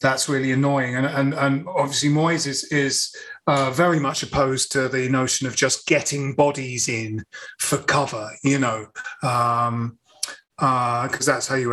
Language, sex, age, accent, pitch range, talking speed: English, male, 30-49, British, 135-175 Hz, 165 wpm